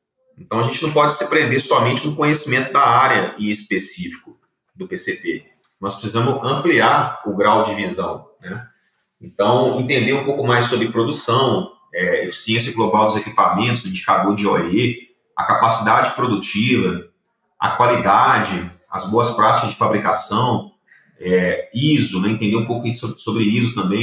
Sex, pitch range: male, 105-130 Hz